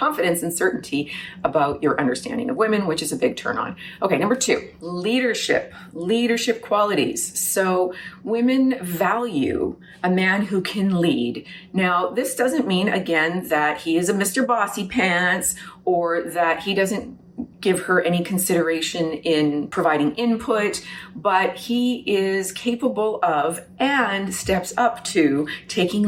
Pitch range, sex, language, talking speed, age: 170-215 Hz, female, English, 140 wpm, 30-49